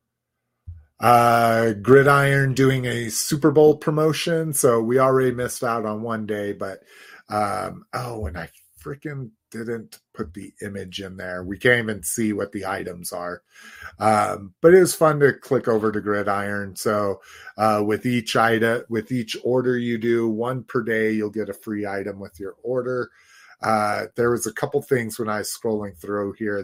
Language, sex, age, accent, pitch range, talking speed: English, male, 30-49, American, 100-120 Hz, 175 wpm